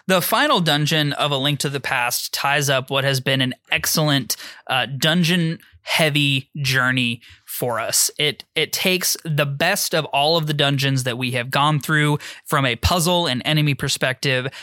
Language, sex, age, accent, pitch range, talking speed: English, male, 20-39, American, 135-160 Hz, 170 wpm